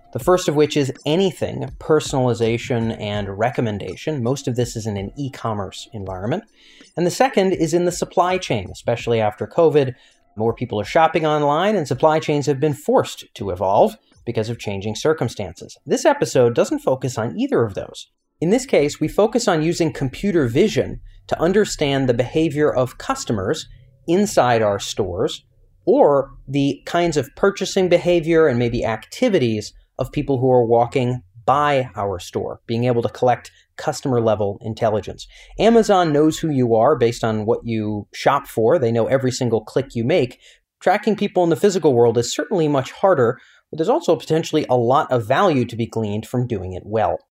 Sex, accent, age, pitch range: male, American, 30-49, 115-160 Hz